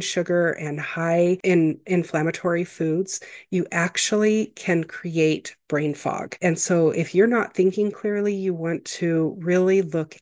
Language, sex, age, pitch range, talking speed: English, female, 30-49, 160-185 Hz, 140 wpm